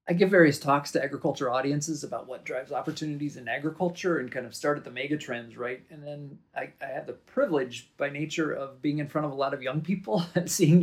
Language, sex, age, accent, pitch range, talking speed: English, male, 40-59, American, 135-165 Hz, 240 wpm